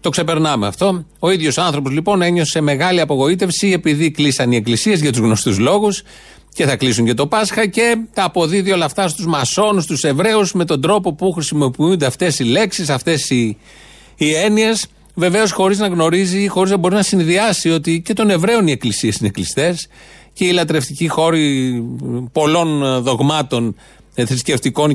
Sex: male